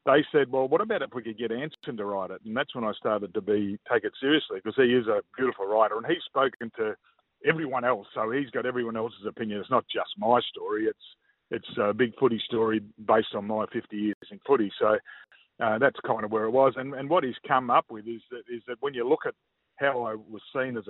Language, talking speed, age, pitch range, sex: English, 250 wpm, 50-69, 110-145 Hz, male